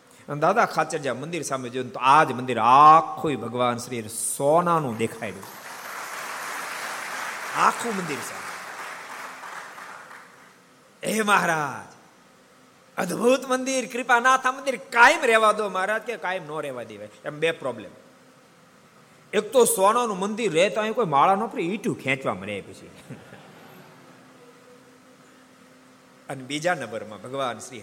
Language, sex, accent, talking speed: Gujarati, male, native, 70 wpm